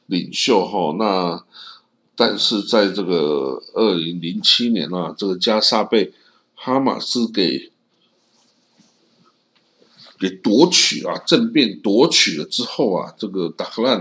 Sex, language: male, Chinese